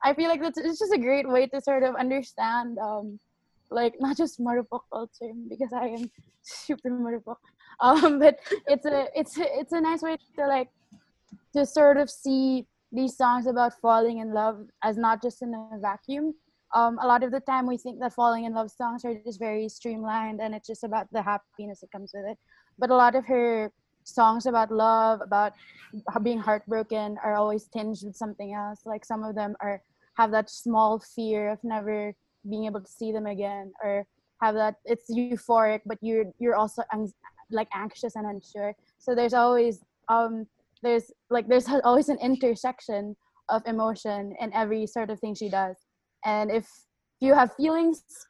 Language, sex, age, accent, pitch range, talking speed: English, female, 20-39, Filipino, 215-270 Hz, 185 wpm